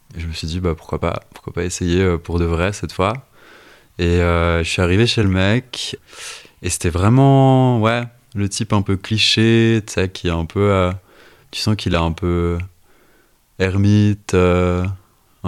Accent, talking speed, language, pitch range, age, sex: French, 180 wpm, German, 85-105 Hz, 20-39, male